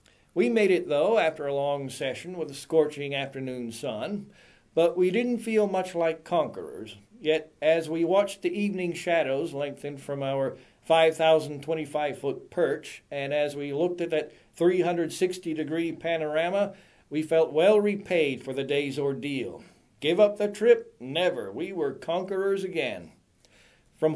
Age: 50-69